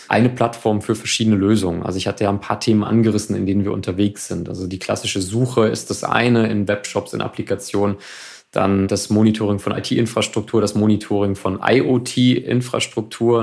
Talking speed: 170 wpm